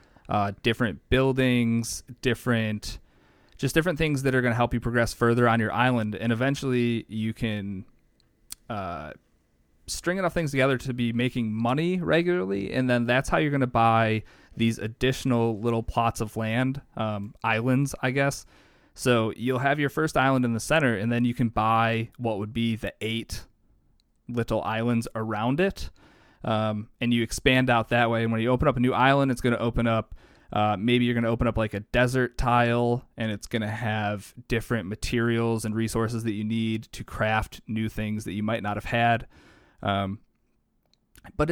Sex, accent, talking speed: male, American, 185 wpm